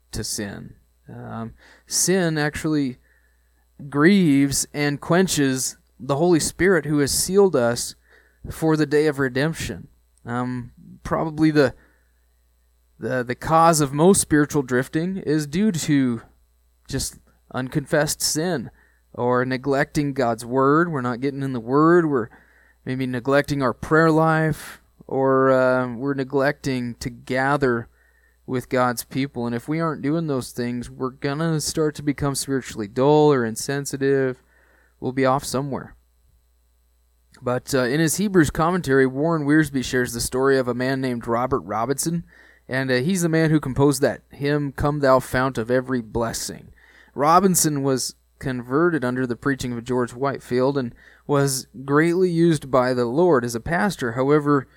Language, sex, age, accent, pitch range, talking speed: English, male, 20-39, American, 125-150 Hz, 145 wpm